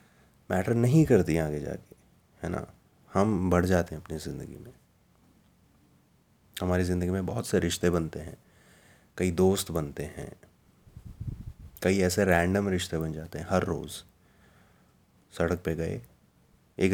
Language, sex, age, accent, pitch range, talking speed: Hindi, male, 30-49, native, 85-100 Hz, 140 wpm